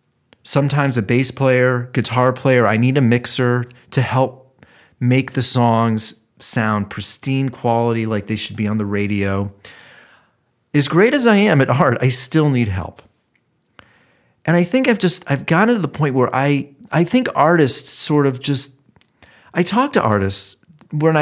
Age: 40-59